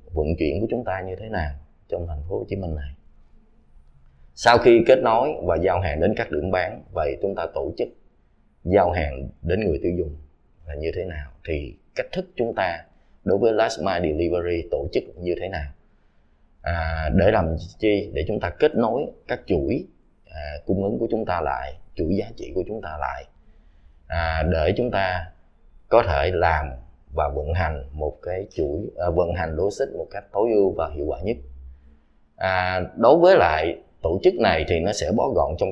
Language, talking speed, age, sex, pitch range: Vietnamese, 200 wpm, 20-39, male, 75-95 Hz